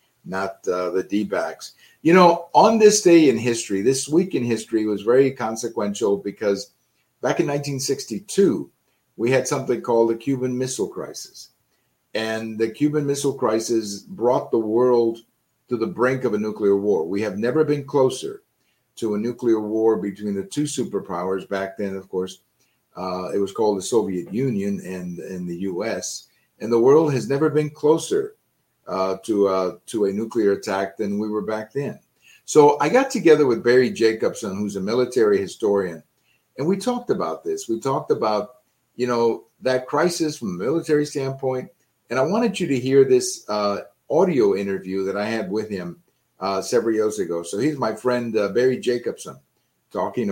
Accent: American